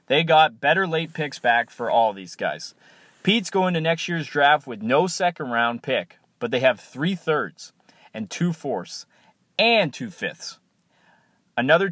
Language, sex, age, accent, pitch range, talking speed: English, male, 30-49, American, 120-170 Hz, 145 wpm